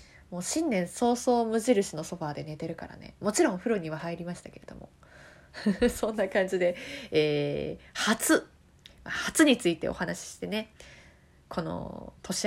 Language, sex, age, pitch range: Japanese, female, 20-39, 180-275 Hz